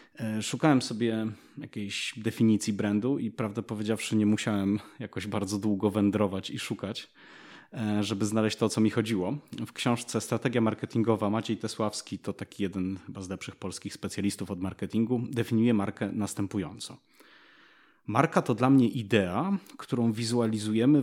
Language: Polish